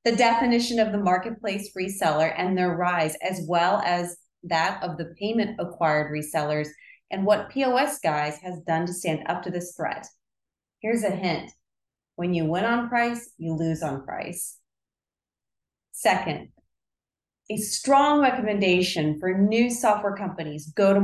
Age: 30-49